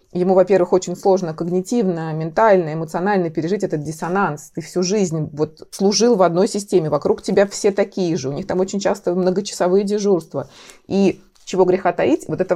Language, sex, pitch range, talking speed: Russian, female, 165-200 Hz, 165 wpm